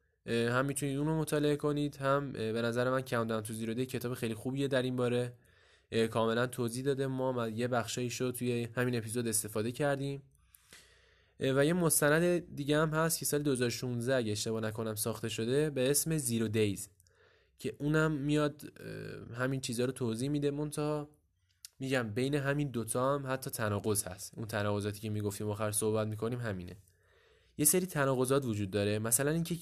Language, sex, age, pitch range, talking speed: Persian, male, 10-29, 105-140 Hz, 170 wpm